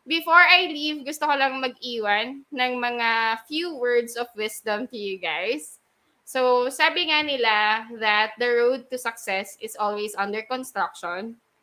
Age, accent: 20-39, native